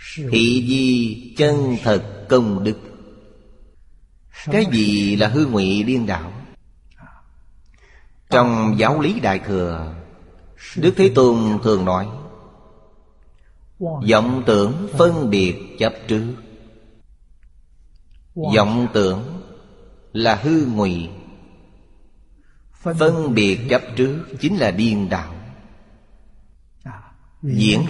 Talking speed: 95 wpm